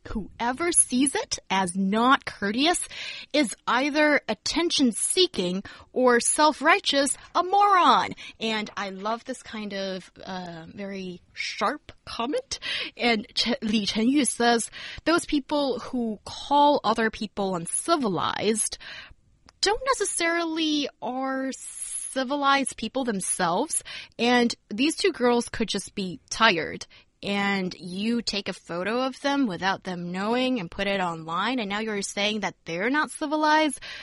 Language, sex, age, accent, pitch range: Chinese, female, 20-39, American, 205-290 Hz